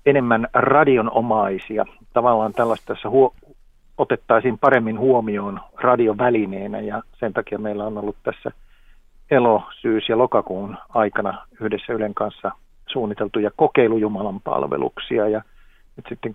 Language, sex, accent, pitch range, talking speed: Finnish, male, native, 105-125 Hz, 110 wpm